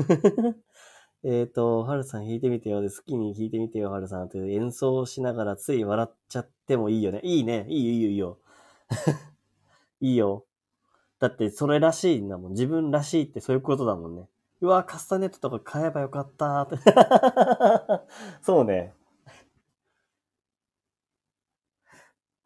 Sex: male